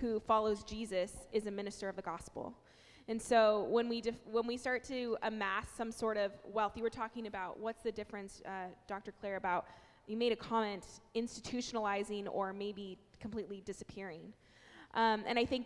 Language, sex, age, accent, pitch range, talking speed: English, female, 20-39, American, 200-230 Hz, 180 wpm